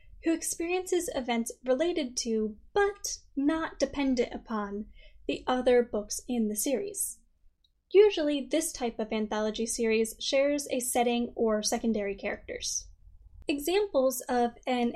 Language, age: English, 10-29